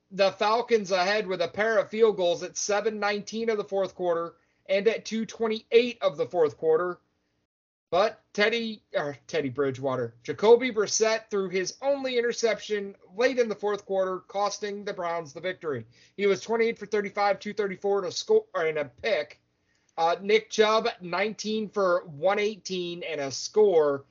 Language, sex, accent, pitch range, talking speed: English, male, American, 170-210 Hz, 160 wpm